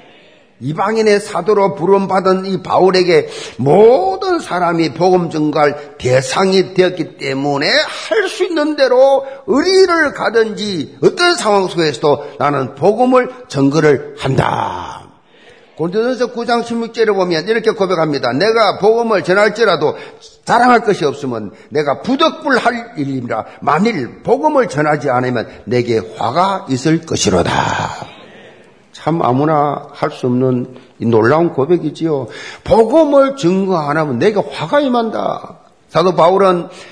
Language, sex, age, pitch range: Korean, male, 50-69, 160-245 Hz